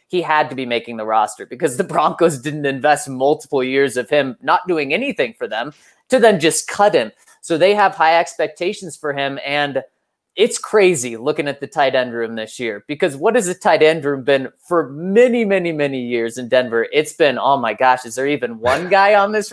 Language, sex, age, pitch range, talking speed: English, male, 20-39, 145-230 Hz, 220 wpm